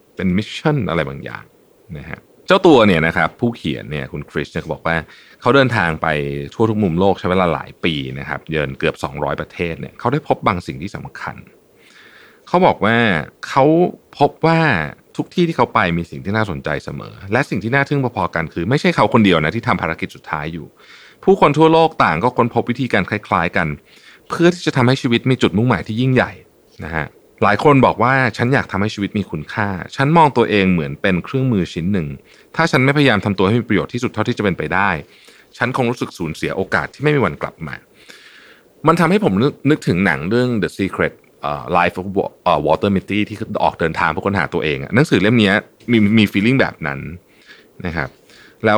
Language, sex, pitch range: Thai, male, 95-135 Hz